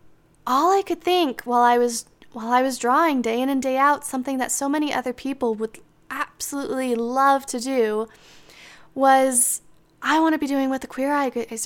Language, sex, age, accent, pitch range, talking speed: English, female, 10-29, American, 230-275 Hz, 190 wpm